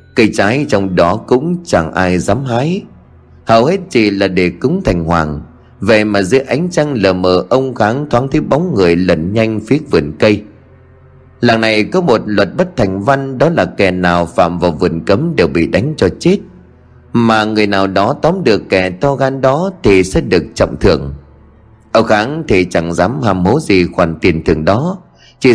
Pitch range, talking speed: 90-135 Hz, 195 wpm